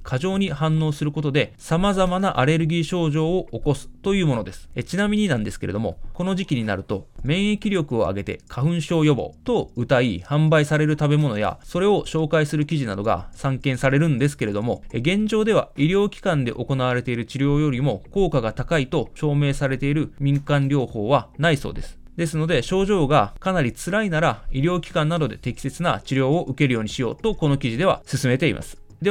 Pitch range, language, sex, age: 130-175 Hz, Japanese, male, 20-39